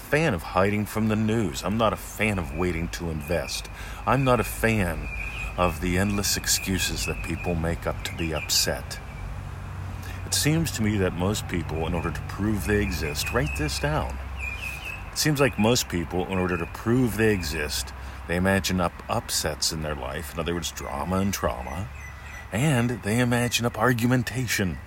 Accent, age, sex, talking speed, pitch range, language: American, 40-59, male, 180 wpm, 80-105 Hz, English